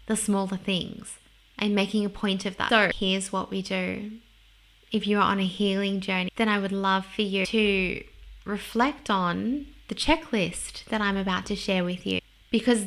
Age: 10-29